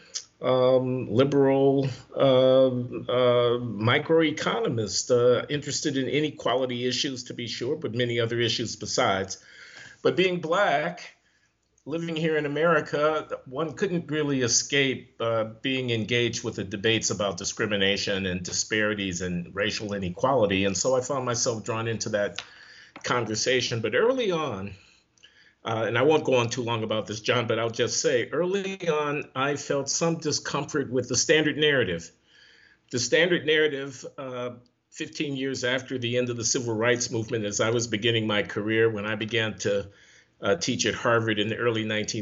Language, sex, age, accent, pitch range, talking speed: English, male, 50-69, American, 110-140 Hz, 155 wpm